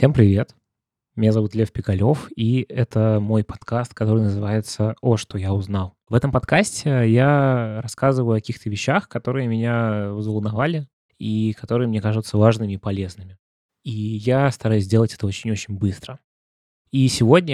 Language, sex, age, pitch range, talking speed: Russian, male, 20-39, 105-125 Hz, 145 wpm